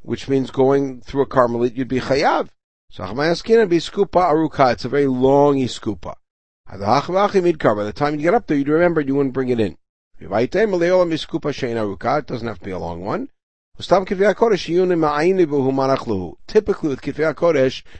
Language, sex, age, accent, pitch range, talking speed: English, male, 50-69, American, 115-150 Hz, 135 wpm